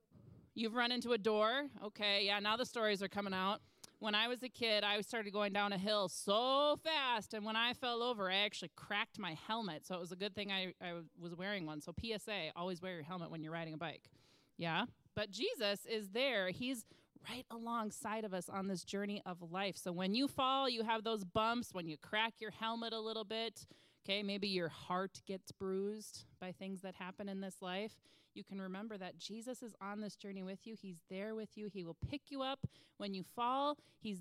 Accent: American